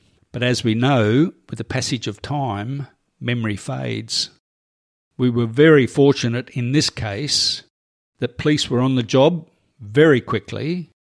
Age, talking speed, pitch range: 50-69, 140 wpm, 110-140 Hz